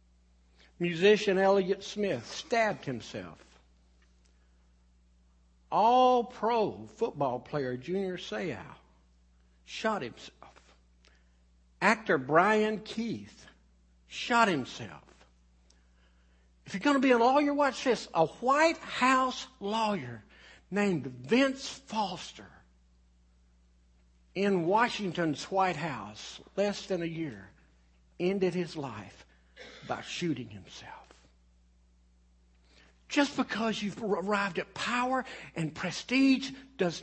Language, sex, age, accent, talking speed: English, male, 60-79, American, 90 wpm